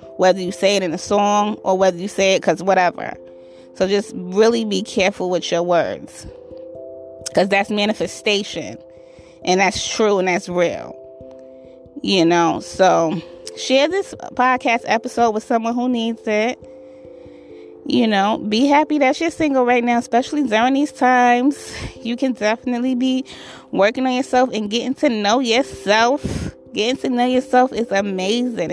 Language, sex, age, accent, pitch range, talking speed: English, female, 20-39, American, 180-245 Hz, 155 wpm